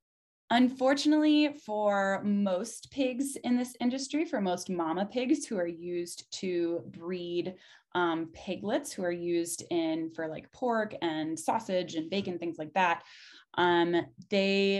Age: 20-39